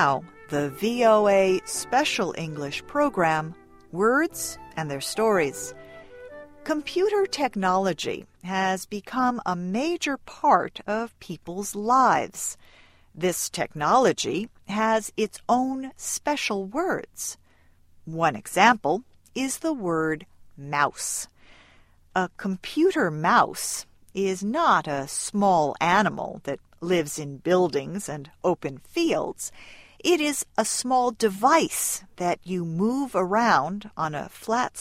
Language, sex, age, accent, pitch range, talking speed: English, female, 50-69, American, 165-260 Hz, 105 wpm